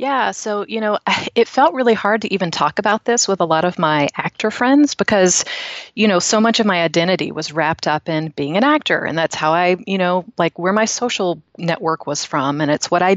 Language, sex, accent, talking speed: English, female, American, 235 wpm